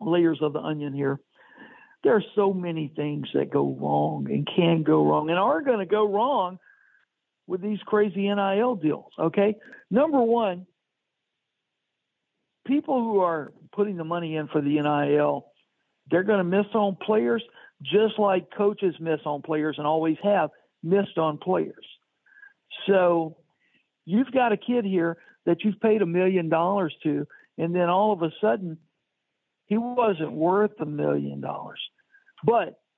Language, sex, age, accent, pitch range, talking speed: English, male, 60-79, American, 160-225 Hz, 155 wpm